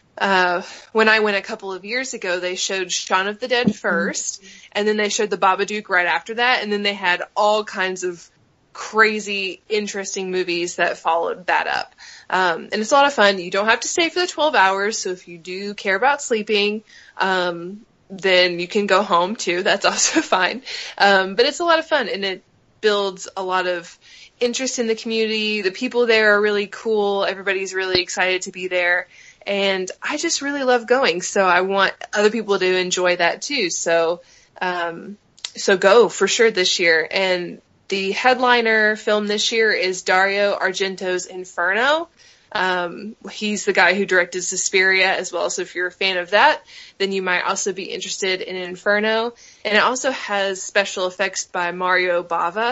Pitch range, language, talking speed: 185-220 Hz, English, 190 wpm